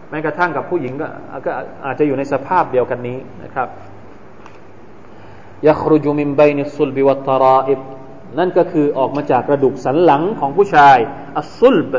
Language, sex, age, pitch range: Thai, male, 20-39, 130-155 Hz